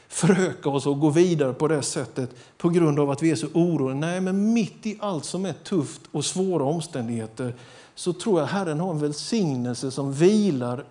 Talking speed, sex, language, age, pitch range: 200 wpm, male, Swedish, 50-69, 125-170 Hz